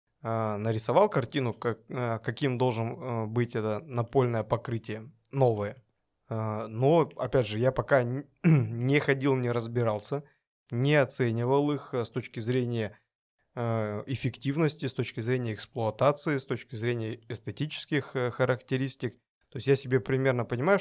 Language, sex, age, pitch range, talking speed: Russian, male, 20-39, 115-135 Hz, 115 wpm